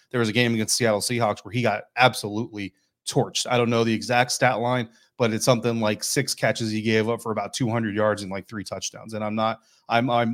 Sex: male